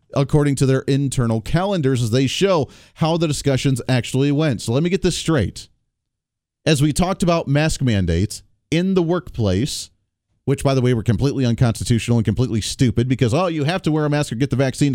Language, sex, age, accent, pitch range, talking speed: English, male, 40-59, American, 120-170 Hz, 200 wpm